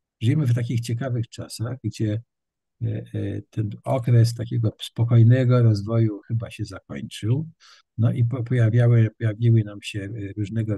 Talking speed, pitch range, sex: 110 wpm, 105-125 Hz, male